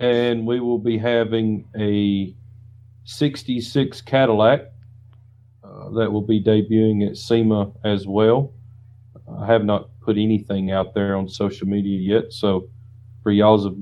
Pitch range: 105-115 Hz